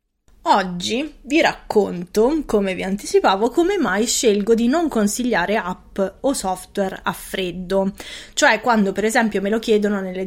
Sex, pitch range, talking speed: female, 195-230 Hz, 145 wpm